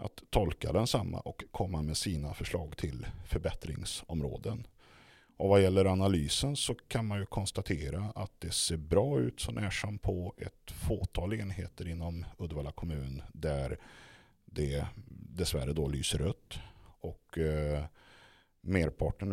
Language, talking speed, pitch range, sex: Swedish, 135 wpm, 75-100 Hz, male